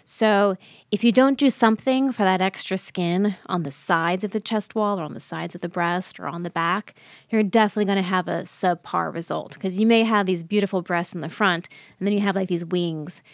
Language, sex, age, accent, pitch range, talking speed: English, female, 20-39, American, 175-205 Hz, 240 wpm